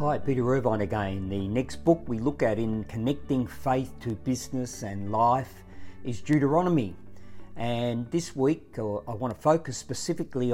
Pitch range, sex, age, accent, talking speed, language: 120-150 Hz, male, 50-69, Australian, 155 wpm, English